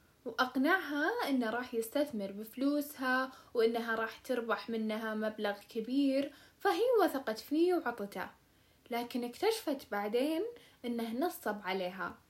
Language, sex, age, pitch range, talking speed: Arabic, female, 10-29, 220-315 Hz, 100 wpm